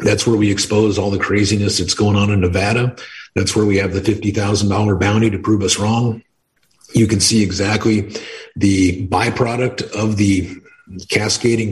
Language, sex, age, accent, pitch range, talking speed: English, male, 50-69, American, 95-110 Hz, 165 wpm